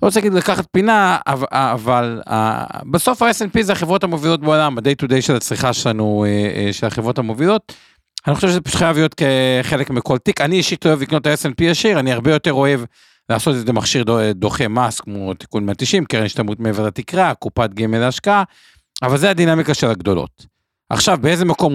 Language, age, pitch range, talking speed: Hebrew, 50-69, 110-155 Hz, 180 wpm